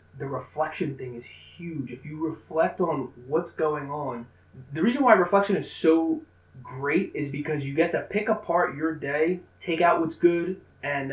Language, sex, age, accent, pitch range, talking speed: English, male, 20-39, American, 135-175 Hz, 180 wpm